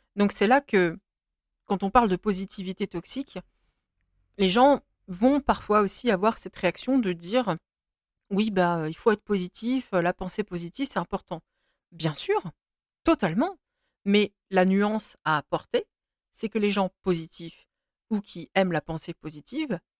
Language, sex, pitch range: French, female, 170-225 Hz